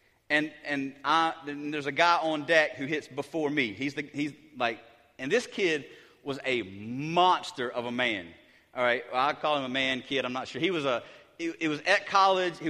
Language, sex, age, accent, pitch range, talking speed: English, male, 30-49, American, 135-200 Hz, 220 wpm